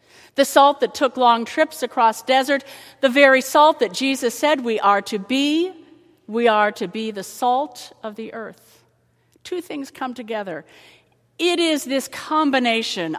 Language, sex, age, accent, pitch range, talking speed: English, female, 50-69, American, 200-255 Hz, 160 wpm